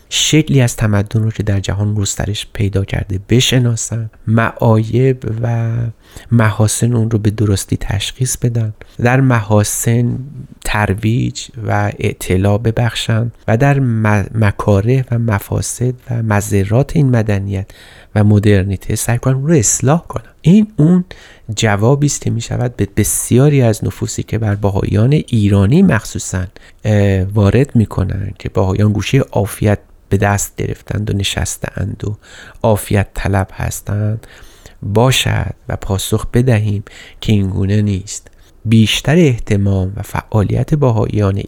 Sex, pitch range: male, 100-125 Hz